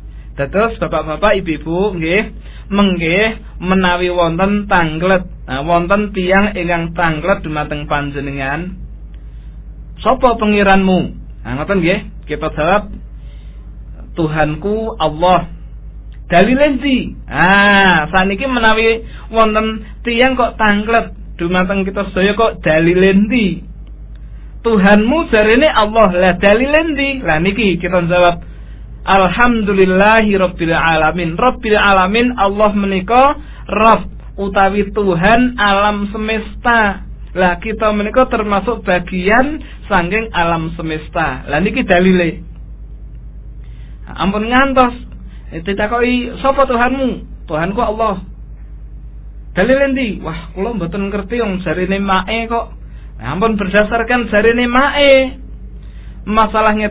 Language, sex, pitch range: Indonesian, male, 175-225 Hz